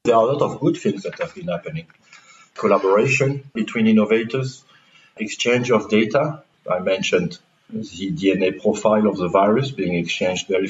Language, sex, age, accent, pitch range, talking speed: English, male, 50-69, French, 100-130 Hz, 155 wpm